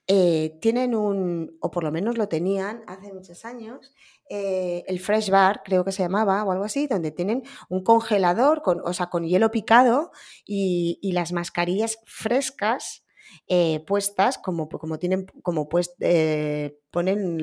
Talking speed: 160 wpm